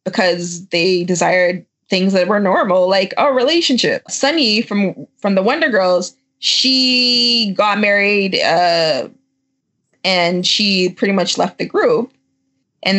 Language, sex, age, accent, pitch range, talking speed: English, female, 20-39, American, 180-255 Hz, 130 wpm